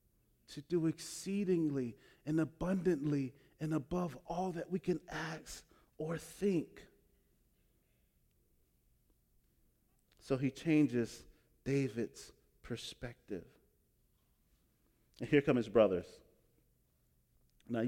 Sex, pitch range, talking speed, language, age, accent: male, 105-160 Hz, 85 wpm, English, 40-59, American